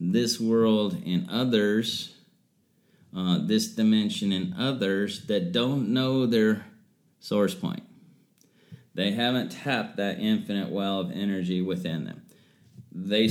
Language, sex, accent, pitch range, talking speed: English, male, American, 90-115 Hz, 115 wpm